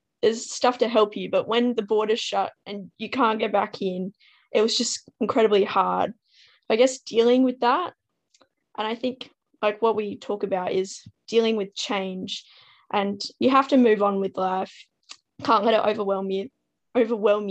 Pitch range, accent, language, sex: 200-235 Hz, Australian, English, female